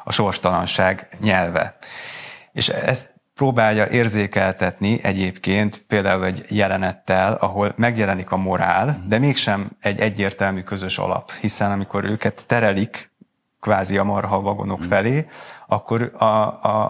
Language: Hungarian